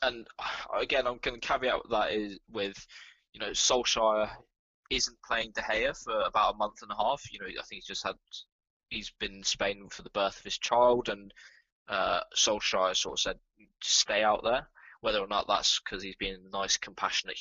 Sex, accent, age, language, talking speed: male, British, 10-29, English, 205 wpm